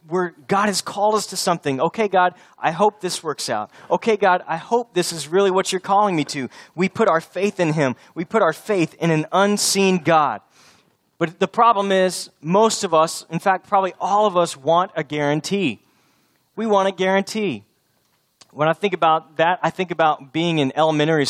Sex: male